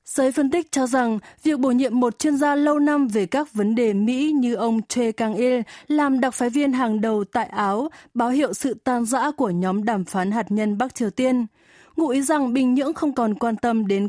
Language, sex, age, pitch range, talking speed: Vietnamese, female, 20-39, 210-275 Hz, 230 wpm